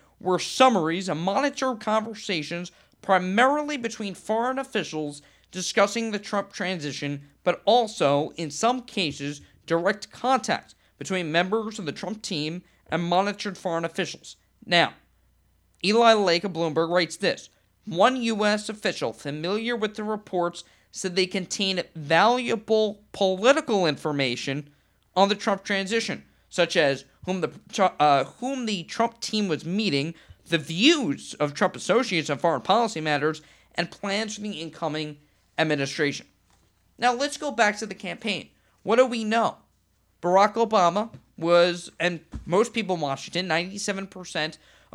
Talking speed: 135 wpm